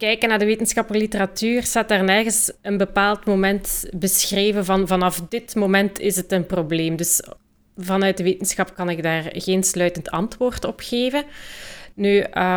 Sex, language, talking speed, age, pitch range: female, Dutch, 160 wpm, 30-49, 180-210 Hz